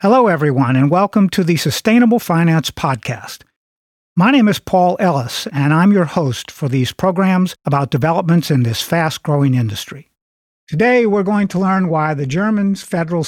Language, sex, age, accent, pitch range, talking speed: English, male, 50-69, American, 145-195 Hz, 165 wpm